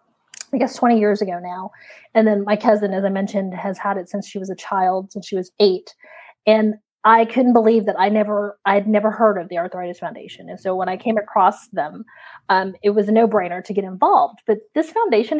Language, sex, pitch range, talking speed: English, female, 190-220 Hz, 225 wpm